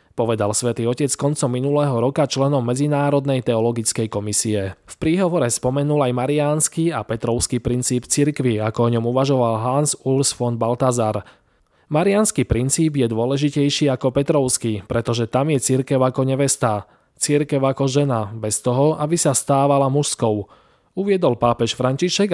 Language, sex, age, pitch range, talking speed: Slovak, male, 20-39, 115-145 Hz, 135 wpm